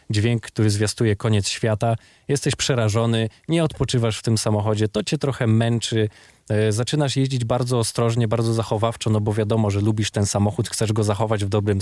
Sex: male